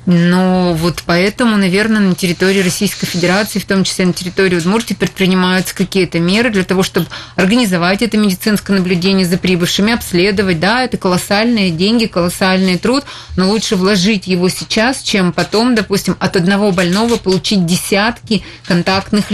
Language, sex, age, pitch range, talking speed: Russian, female, 20-39, 185-215 Hz, 145 wpm